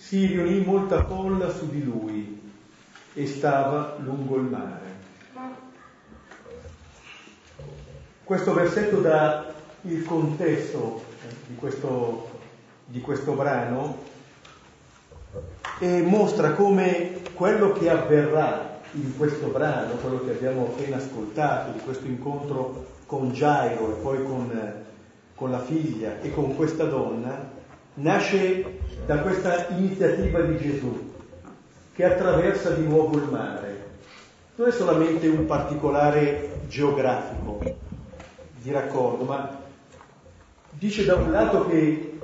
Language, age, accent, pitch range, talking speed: Italian, 40-59, native, 125-170 Hz, 110 wpm